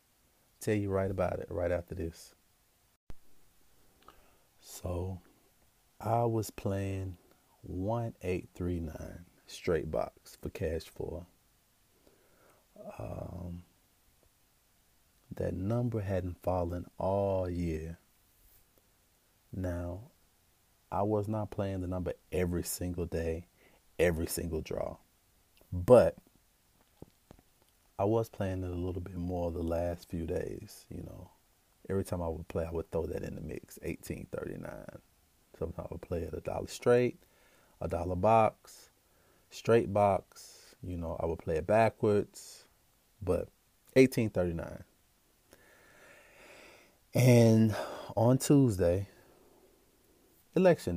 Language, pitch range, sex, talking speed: English, 85-105 Hz, male, 110 wpm